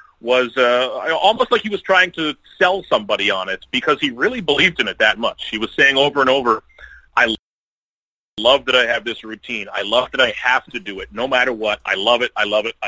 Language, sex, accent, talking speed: English, male, American, 230 wpm